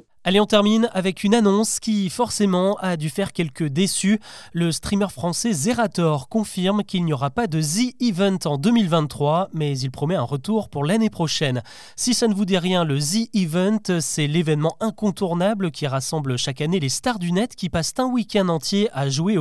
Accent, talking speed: French, 185 wpm